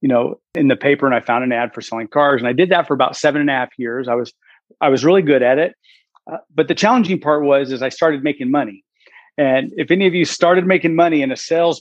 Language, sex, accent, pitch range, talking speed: English, male, American, 130-165 Hz, 275 wpm